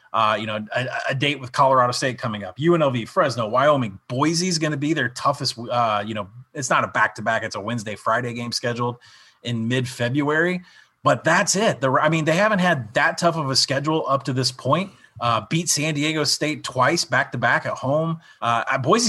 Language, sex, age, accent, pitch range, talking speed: English, male, 30-49, American, 120-165 Hz, 205 wpm